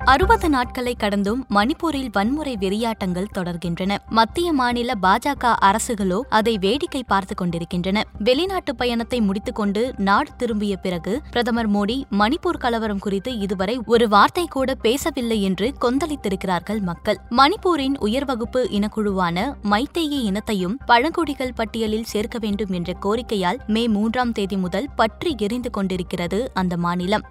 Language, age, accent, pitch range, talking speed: Tamil, 20-39, native, 205-260 Hz, 120 wpm